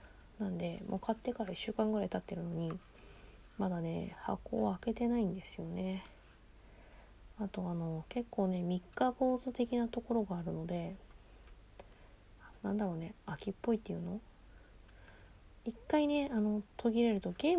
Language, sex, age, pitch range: Japanese, female, 20-39, 180-215 Hz